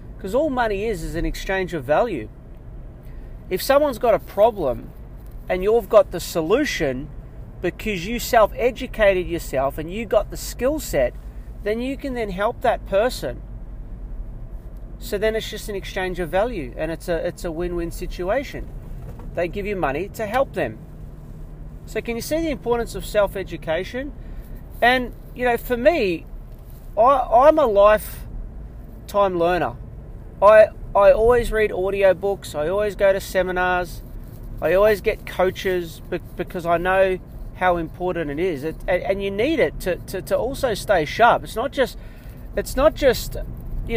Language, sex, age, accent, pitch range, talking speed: English, male, 40-59, Australian, 170-220 Hz, 160 wpm